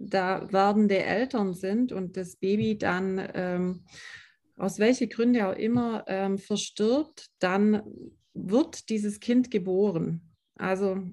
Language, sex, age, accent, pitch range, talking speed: German, female, 30-49, German, 190-230 Hz, 120 wpm